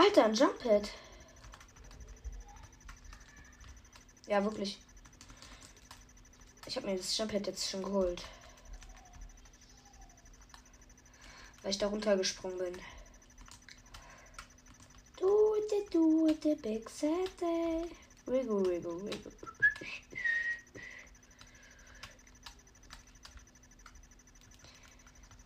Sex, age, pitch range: female, 20-39, 195-295 Hz